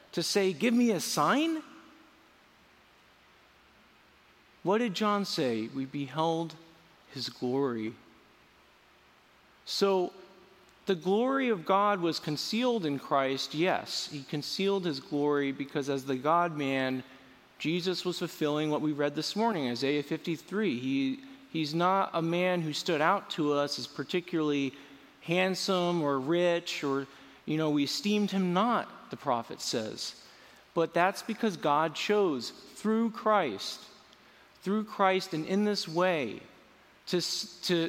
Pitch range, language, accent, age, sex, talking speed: 140-190 Hz, English, American, 40-59, male, 125 wpm